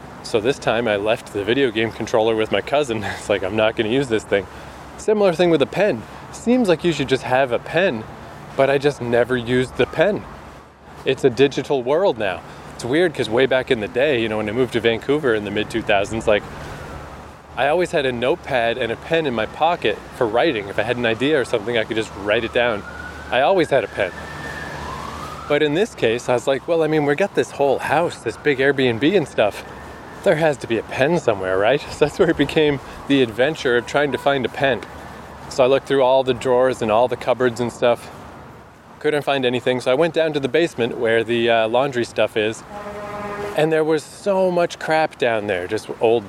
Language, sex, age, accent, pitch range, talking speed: English, male, 20-39, American, 115-145 Hz, 230 wpm